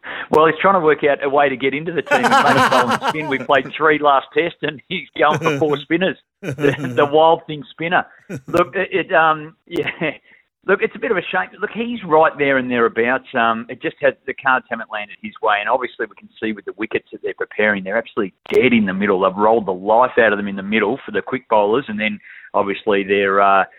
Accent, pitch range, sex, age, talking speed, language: Australian, 120-170 Hz, male, 40-59, 240 wpm, English